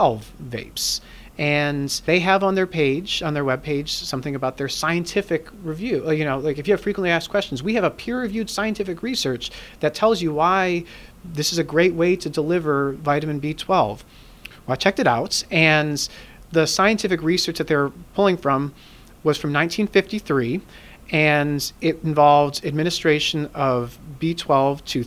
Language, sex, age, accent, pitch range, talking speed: English, male, 30-49, American, 140-175 Hz, 160 wpm